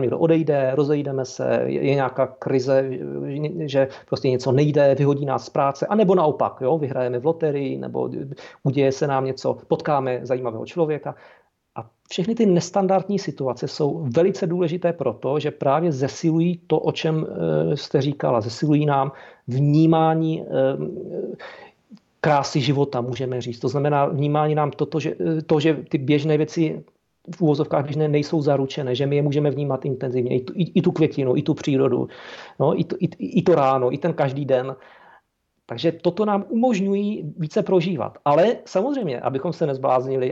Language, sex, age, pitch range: Czech, male, 40-59, 135-170 Hz